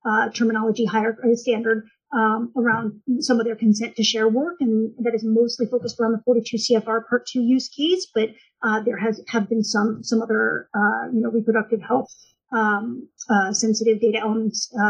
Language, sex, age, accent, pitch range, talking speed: English, female, 30-49, American, 220-255 Hz, 185 wpm